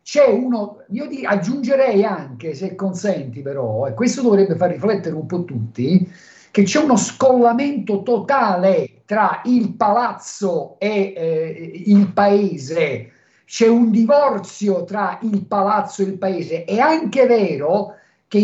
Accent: native